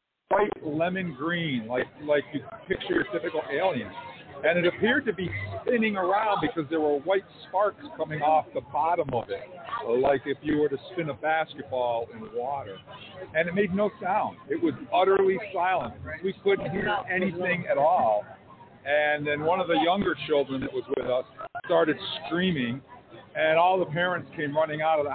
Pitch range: 145-185 Hz